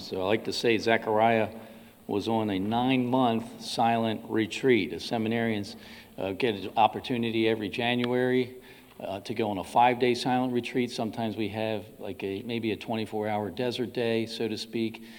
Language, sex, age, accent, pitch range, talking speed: English, male, 50-69, American, 110-125 Hz, 160 wpm